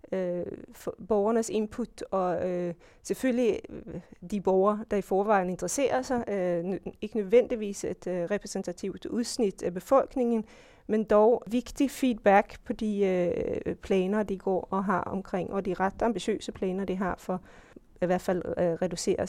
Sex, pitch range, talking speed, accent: female, 180-215 Hz, 155 wpm, native